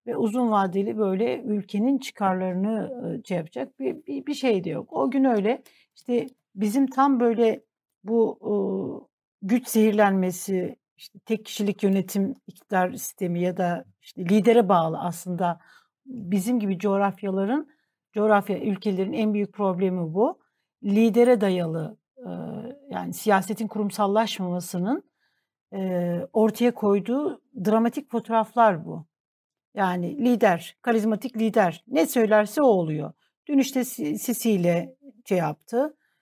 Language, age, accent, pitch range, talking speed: Turkish, 60-79, native, 195-240 Hz, 115 wpm